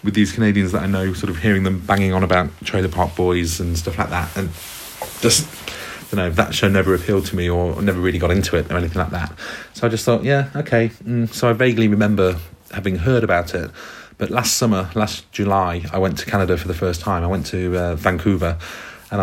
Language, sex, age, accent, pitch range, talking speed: English, male, 30-49, British, 90-105 Hz, 230 wpm